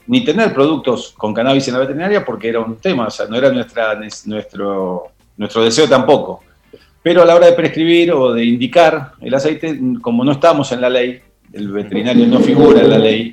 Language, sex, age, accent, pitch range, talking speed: Spanish, male, 40-59, Argentinian, 105-140 Hz, 205 wpm